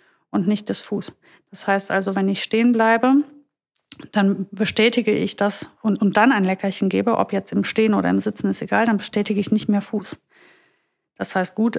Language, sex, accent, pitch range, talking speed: German, female, German, 195-275 Hz, 200 wpm